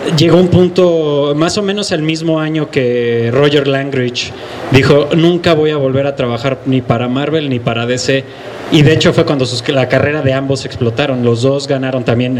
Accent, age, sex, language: Mexican, 30-49, male, English